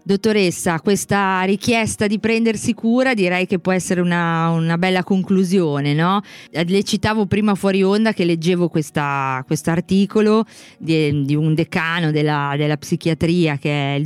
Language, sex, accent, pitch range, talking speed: Italian, female, native, 150-190 Hz, 145 wpm